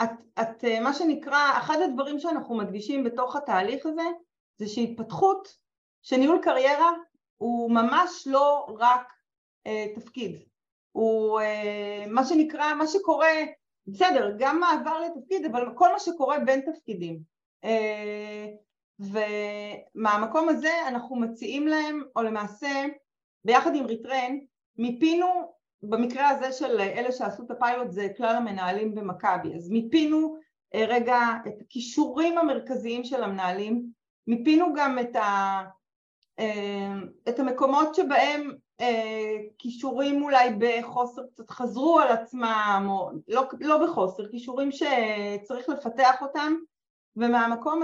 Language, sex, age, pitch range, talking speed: Hebrew, female, 30-49, 220-300 Hz, 110 wpm